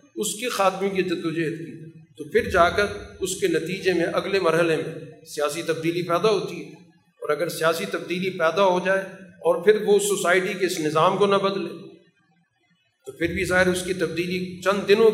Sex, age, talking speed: male, 50-69, 190 wpm